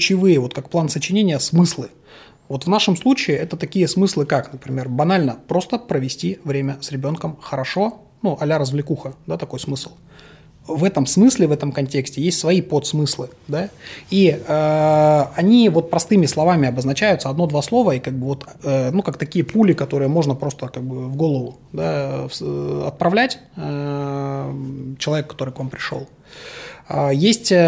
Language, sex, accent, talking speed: Russian, male, native, 155 wpm